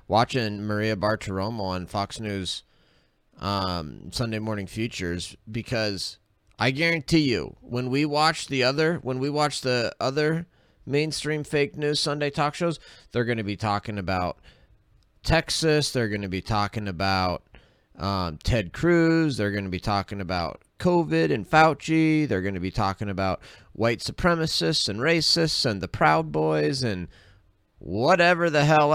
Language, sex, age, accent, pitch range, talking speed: English, male, 30-49, American, 100-150 Hz, 150 wpm